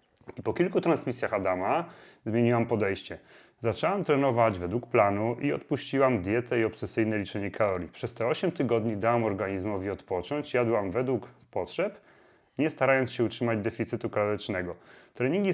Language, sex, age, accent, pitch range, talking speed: Polish, male, 30-49, native, 105-135 Hz, 135 wpm